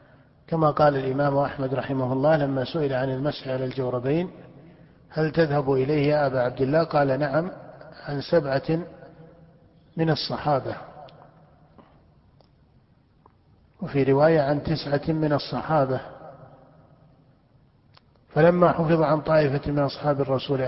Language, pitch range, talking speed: Arabic, 135-160 Hz, 110 wpm